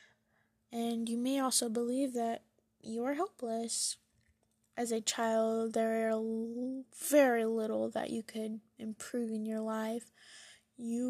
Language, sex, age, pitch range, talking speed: English, female, 10-29, 225-245 Hz, 130 wpm